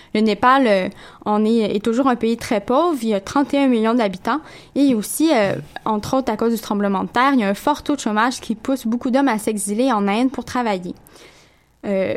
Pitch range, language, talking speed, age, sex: 210-275 Hz, French, 220 wpm, 10-29, female